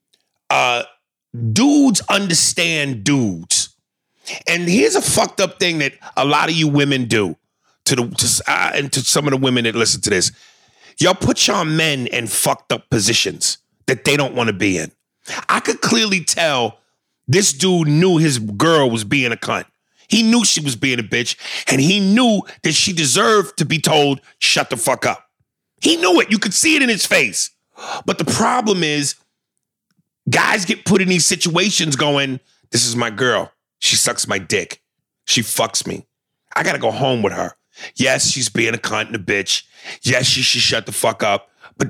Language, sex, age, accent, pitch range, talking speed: English, male, 30-49, American, 135-195 Hz, 190 wpm